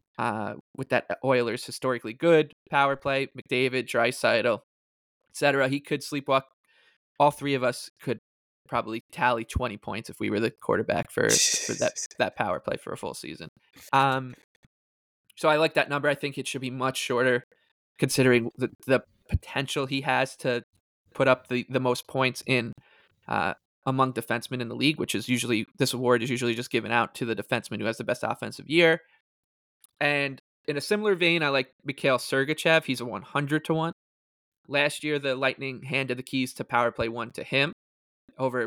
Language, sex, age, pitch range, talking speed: English, male, 20-39, 120-140 Hz, 180 wpm